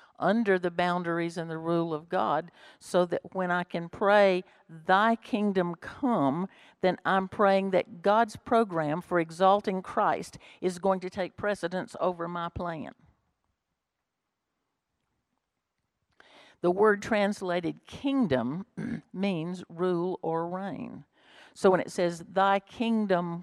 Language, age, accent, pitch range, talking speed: English, 60-79, American, 165-190 Hz, 125 wpm